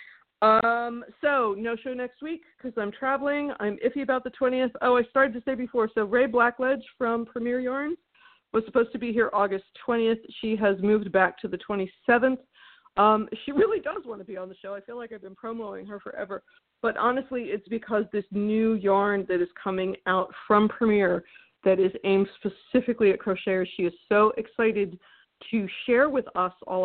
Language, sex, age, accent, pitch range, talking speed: English, female, 50-69, American, 195-240 Hz, 190 wpm